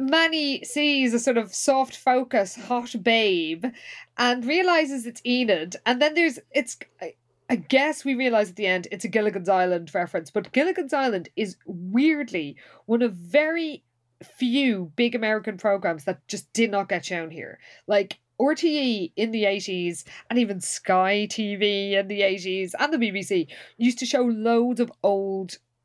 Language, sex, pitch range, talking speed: English, female, 185-245 Hz, 160 wpm